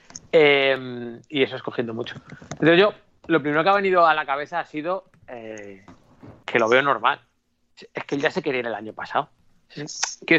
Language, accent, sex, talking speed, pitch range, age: Spanish, Spanish, male, 190 wpm, 125-155 Hz, 30-49